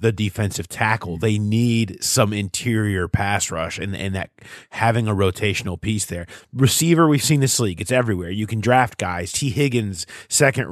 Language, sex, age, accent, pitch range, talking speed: English, male, 30-49, American, 90-115 Hz, 175 wpm